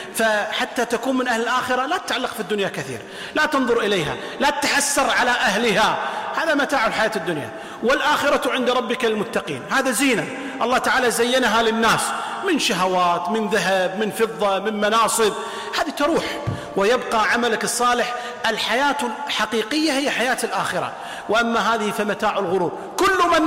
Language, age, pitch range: Arabic, 40-59, 220-275 Hz